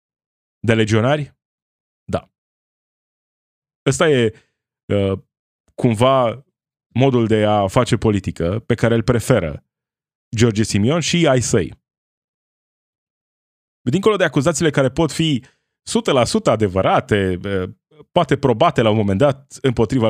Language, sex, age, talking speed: Romanian, male, 20-39, 105 wpm